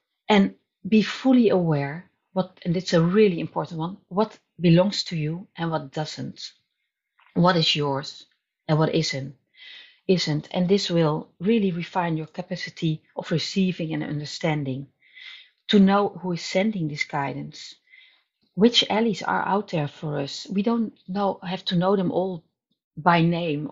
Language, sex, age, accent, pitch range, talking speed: English, female, 40-59, Dutch, 160-200 Hz, 150 wpm